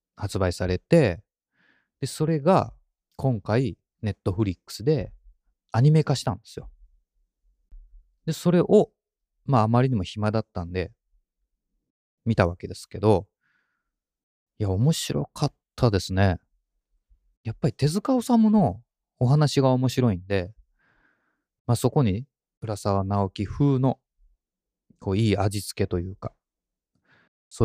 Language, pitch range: Japanese, 90-130 Hz